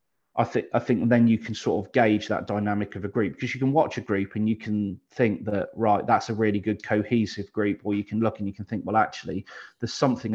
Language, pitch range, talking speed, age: English, 105-120 Hz, 260 wpm, 30-49